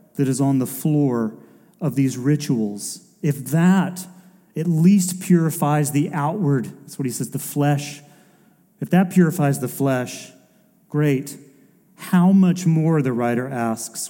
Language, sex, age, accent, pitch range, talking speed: English, male, 40-59, American, 125-190 Hz, 140 wpm